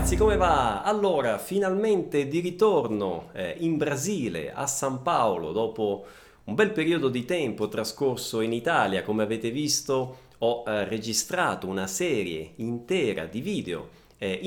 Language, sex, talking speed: Italian, male, 135 wpm